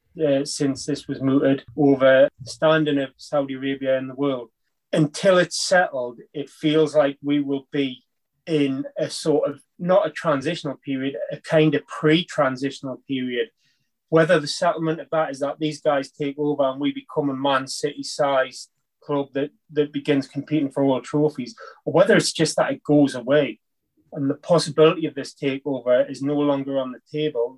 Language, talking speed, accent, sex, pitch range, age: English, 175 wpm, British, male, 135-155 Hz, 30-49